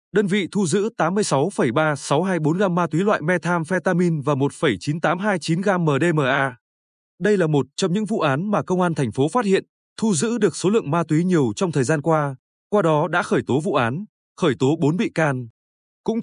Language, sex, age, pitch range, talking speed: Vietnamese, male, 20-39, 150-195 Hz, 195 wpm